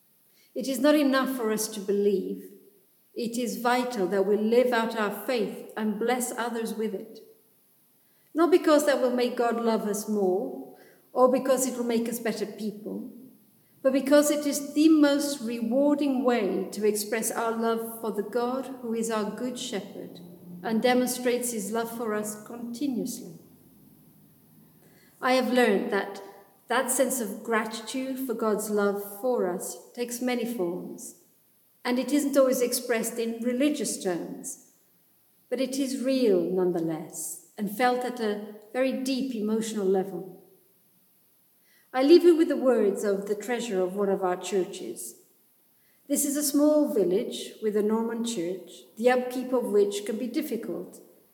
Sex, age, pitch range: female, 50-69, 210-255 Hz